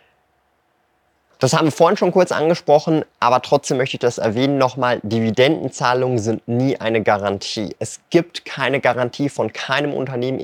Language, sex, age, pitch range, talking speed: German, male, 30-49, 110-135 Hz, 150 wpm